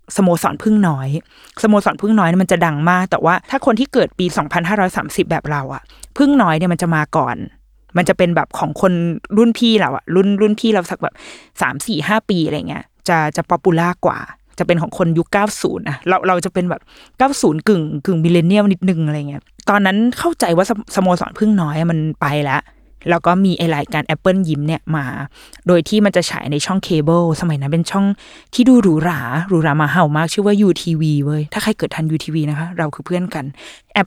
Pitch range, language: 160-210 Hz, Thai